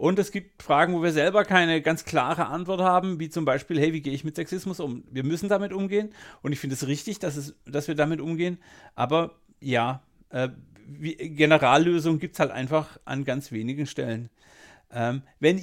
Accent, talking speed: German, 190 wpm